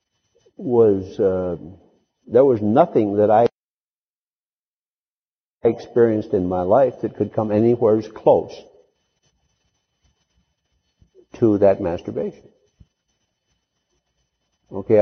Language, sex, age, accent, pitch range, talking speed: English, male, 60-79, American, 95-120 Hz, 85 wpm